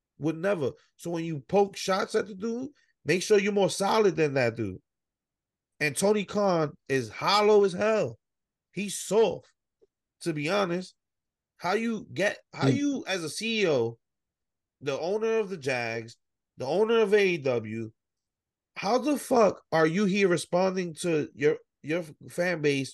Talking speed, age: 155 wpm, 30-49